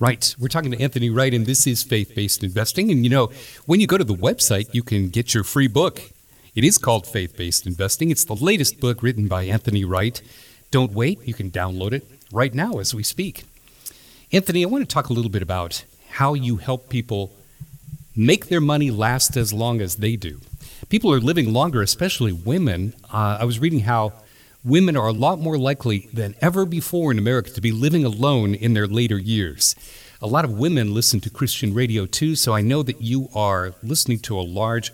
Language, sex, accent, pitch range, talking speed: English, male, American, 105-135 Hz, 210 wpm